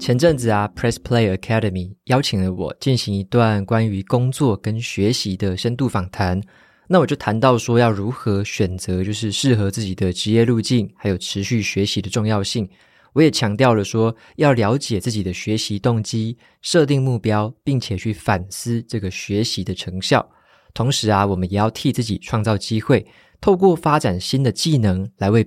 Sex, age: male, 20-39